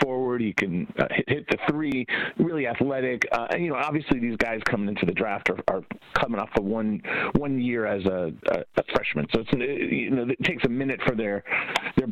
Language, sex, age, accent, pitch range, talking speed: English, male, 40-59, American, 110-140 Hz, 225 wpm